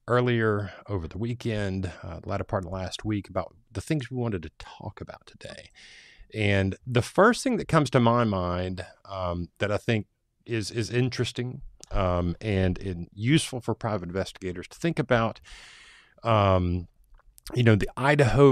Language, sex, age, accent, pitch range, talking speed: English, male, 30-49, American, 95-120 Hz, 170 wpm